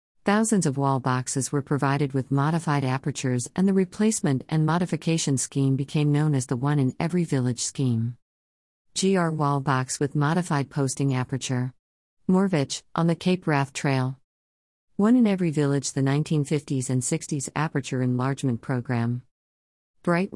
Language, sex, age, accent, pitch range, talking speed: English, female, 50-69, American, 130-155 Hz, 125 wpm